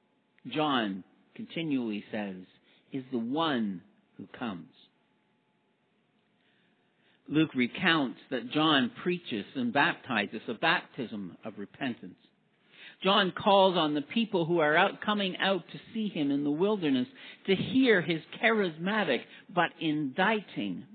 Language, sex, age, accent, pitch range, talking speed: English, male, 50-69, American, 145-205 Hz, 115 wpm